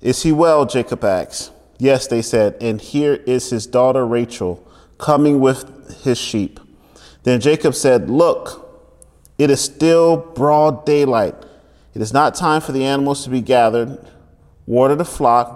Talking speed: 155 wpm